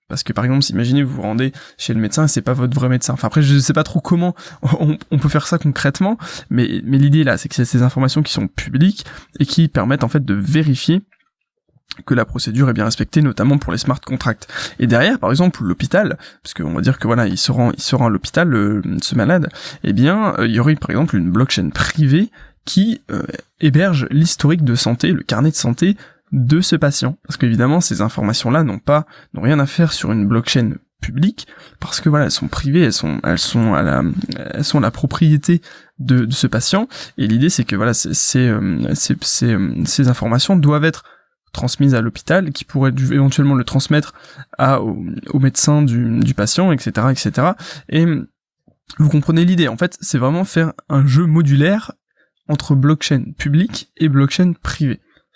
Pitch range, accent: 125-160 Hz, French